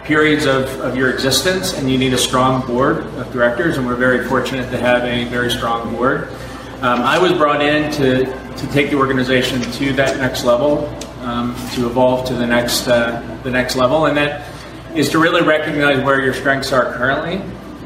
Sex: male